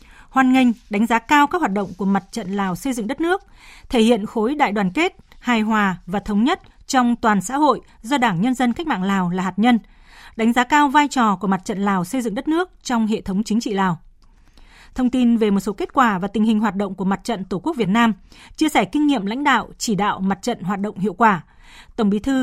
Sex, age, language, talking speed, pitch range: female, 20-39, Vietnamese, 255 wpm, 205-275 Hz